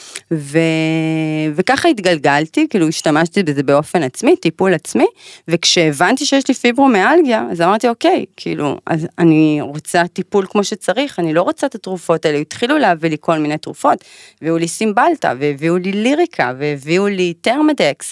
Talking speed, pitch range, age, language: 150 wpm, 165-240 Hz, 30-49, Hebrew